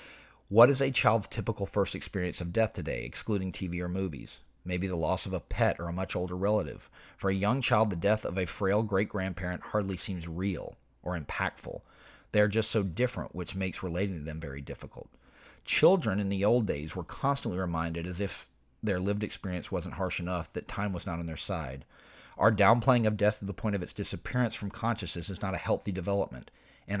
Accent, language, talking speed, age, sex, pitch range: American, English, 205 wpm, 40-59, male, 90-110 Hz